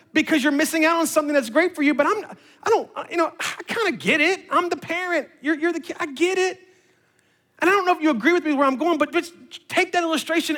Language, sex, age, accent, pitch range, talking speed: English, male, 40-59, American, 240-340 Hz, 260 wpm